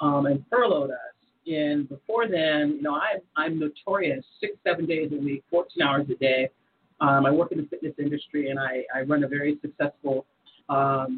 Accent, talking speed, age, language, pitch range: American, 190 wpm, 40-59, English, 145-175 Hz